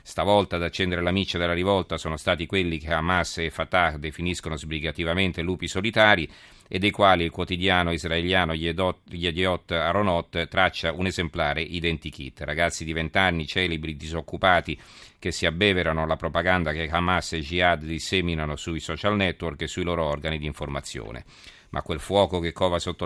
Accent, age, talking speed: native, 40-59, 160 wpm